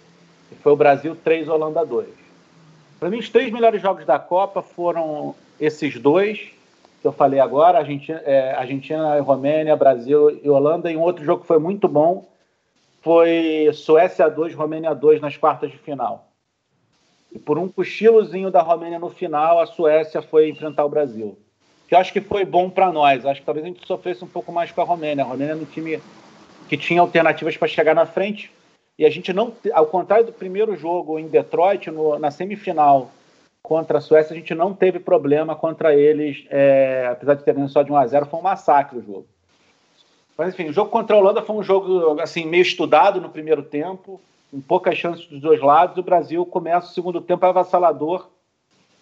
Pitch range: 150-180 Hz